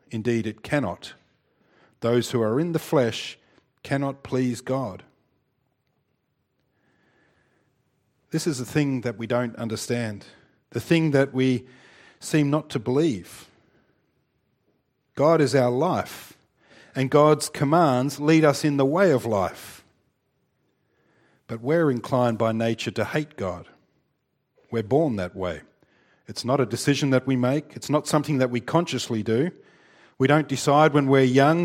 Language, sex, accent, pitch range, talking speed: English, male, Australian, 125-150 Hz, 140 wpm